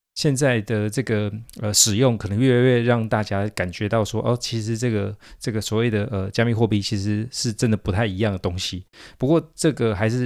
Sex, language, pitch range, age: male, Chinese, 105-130 Hz, 20-39